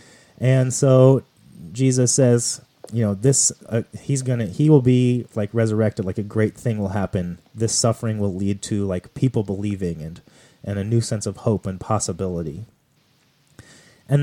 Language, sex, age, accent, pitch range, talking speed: English, male, 30-49, American, 100-125 Hz, 170 wpm